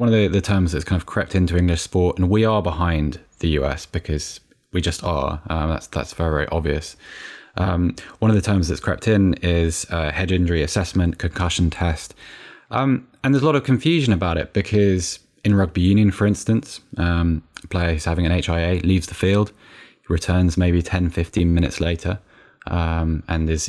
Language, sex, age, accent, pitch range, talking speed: English, male, 20-39, British, 85-105 Hz, 195 wpm